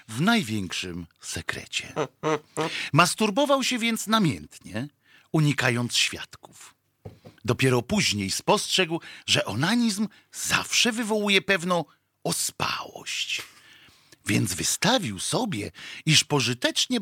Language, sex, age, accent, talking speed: Polish, male, 50-69, native, 80 wpm